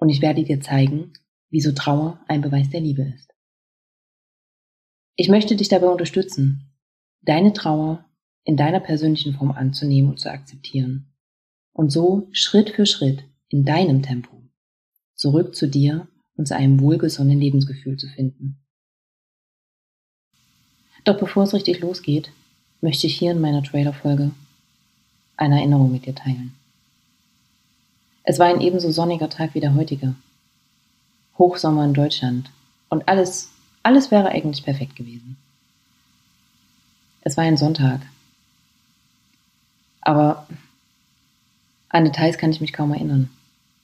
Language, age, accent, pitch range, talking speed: German, 30-49, German, 135-160 Hz, 125 wpm